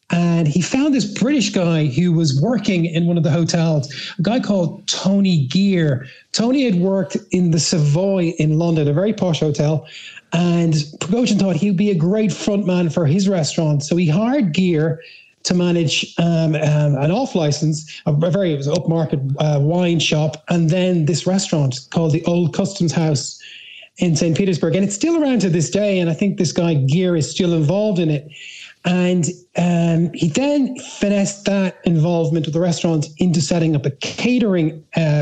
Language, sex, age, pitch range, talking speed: English, male, 30-49, 160-190 Hz, 185 wpm